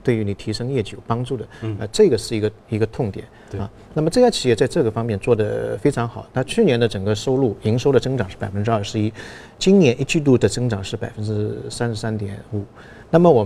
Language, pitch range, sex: Chinese, 105-125 Hz, male